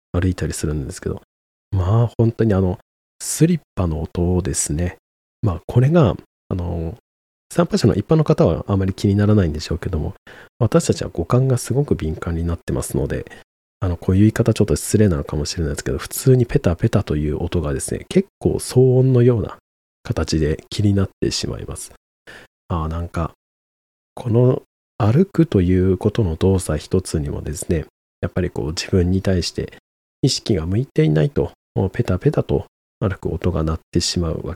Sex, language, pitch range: male, Japanese, 80-125 Hz